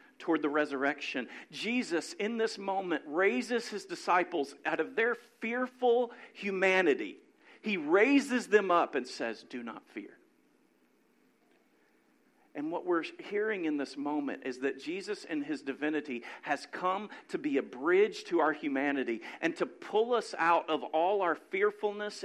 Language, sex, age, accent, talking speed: English, male, 50-69, American, 150 wpm